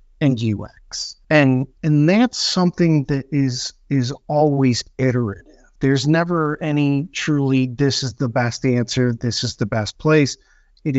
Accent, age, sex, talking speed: American, 50-69, male, 140 wpm